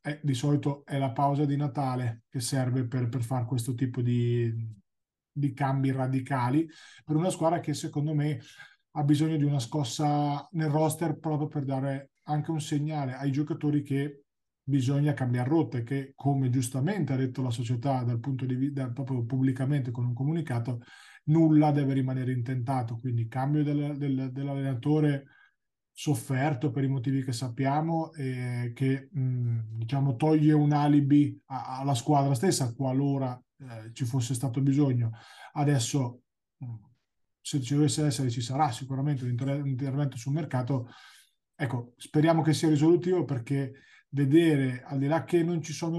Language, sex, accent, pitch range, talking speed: Italian, male, native, 130-150 Hz, 160 wpm